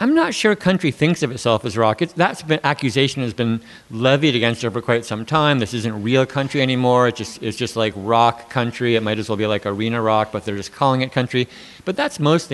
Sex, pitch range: male, 110-130 Hz